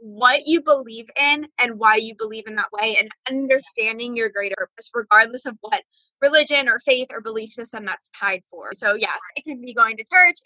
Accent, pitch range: American, 220-275 Hz